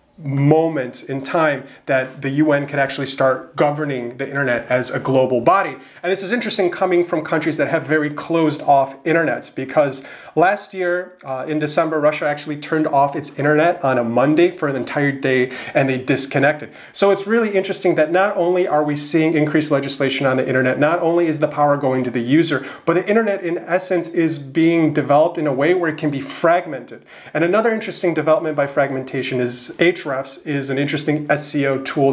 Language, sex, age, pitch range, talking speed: English, male, 30-49, 135-165 Hz, 195 wpm